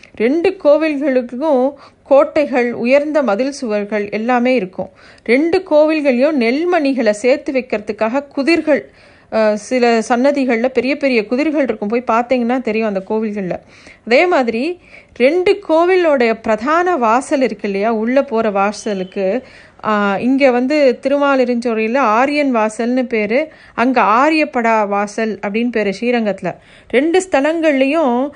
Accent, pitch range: native, 225-280 Hz